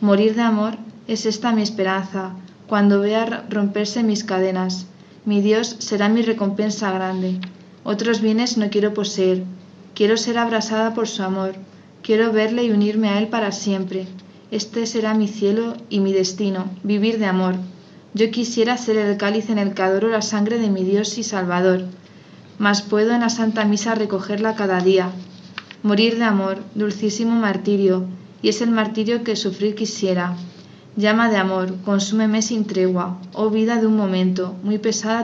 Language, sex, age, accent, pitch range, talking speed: Spanish, female, 20-39, Spanish, 190-220 Hz, 165 wpm